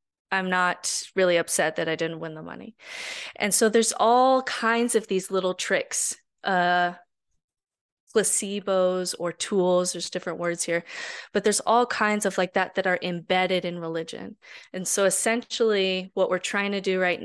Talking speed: 165 wpm